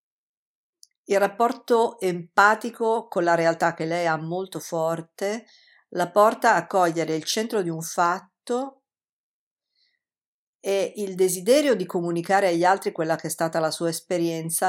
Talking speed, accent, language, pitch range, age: 140 wpm, native, Italian, 170-210 Hz, 50-69